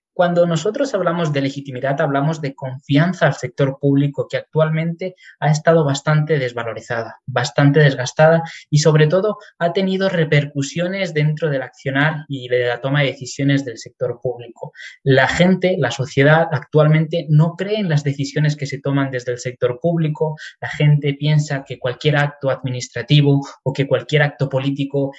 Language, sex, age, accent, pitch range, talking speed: Spanish, male, 20-39, Spanish, 130-160 Hz, 155 wpm